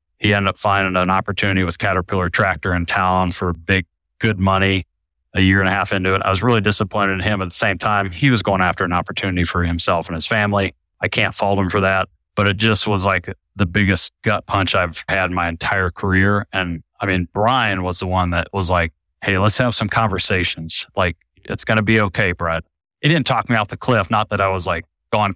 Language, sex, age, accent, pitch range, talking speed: English, male, 30-49, American, 90-110 Hz, 235 wpm